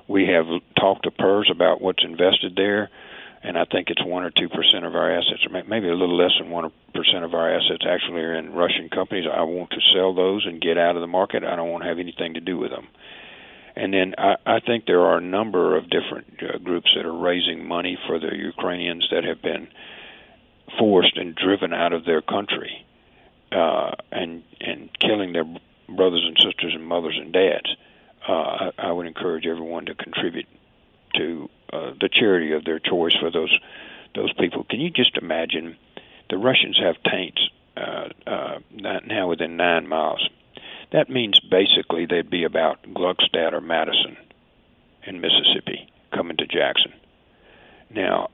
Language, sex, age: English, male, 50-69